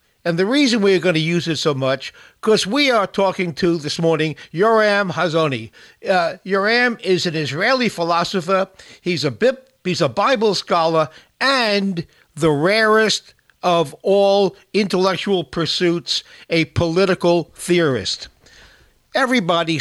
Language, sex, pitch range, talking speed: English, male, 150-195 Hz, 135 wpm